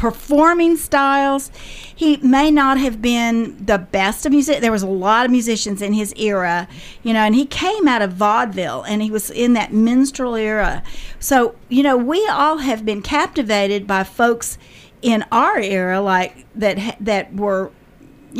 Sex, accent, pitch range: female, American, 200-255 Hz